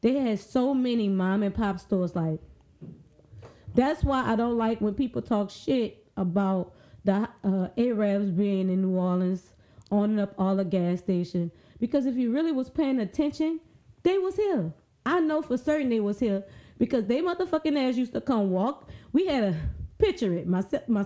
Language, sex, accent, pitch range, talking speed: English, female, American, 190-275 Hz, 180 wpm